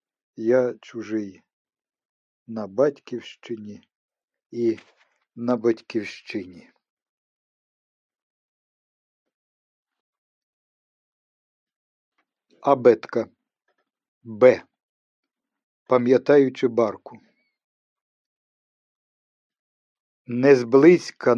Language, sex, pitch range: Ukrainian, male, 110-130 Hz